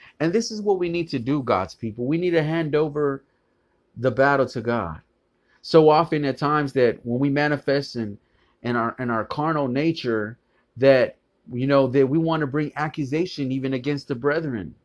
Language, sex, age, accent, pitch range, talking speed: English, male, 30-49, American, 120-150 Hz, 175 wpm